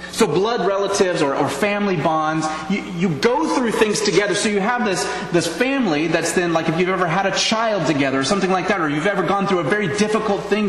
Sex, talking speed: male, 235 wpm